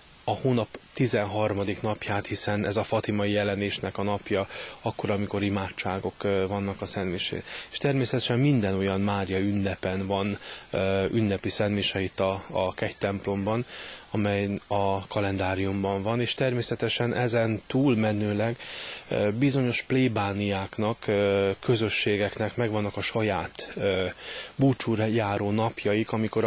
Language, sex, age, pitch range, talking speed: Hungarian, male, 20-39, 100-115 Hz, 105 wpm